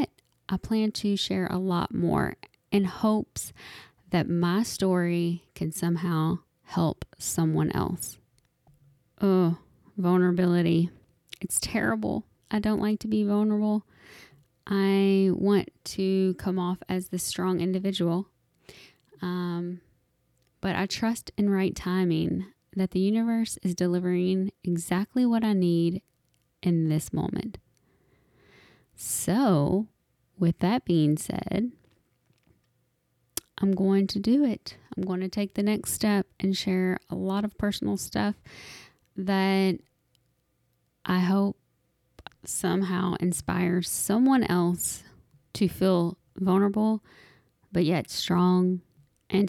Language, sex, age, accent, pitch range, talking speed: English, female, 10-29, American, 170-200 Hz, 115 wpm